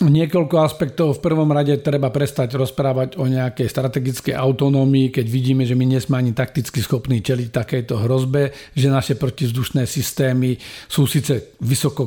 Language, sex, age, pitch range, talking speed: Slovak, male, 50-69, 130-145 Hz, 150 wpm